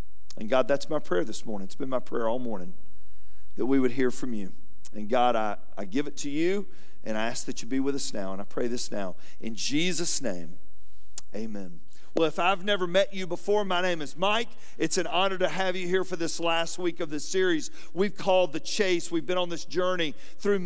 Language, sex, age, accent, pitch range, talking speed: English, male, 40-59, American, 145-210 Hz, 230 wpm